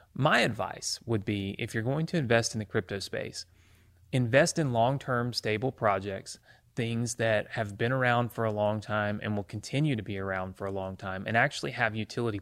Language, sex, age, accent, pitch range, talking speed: English, male, 30-49, American, 105-135 Hz, 200 wpm